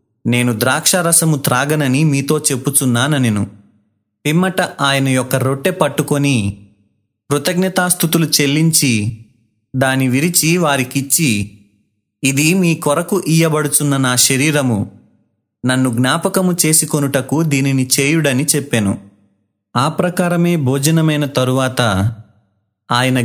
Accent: native